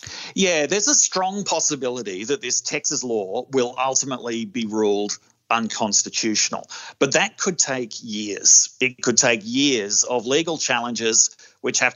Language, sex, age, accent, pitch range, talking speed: English, male, 40-59, Australian, 110-150 Hz, 140 wpm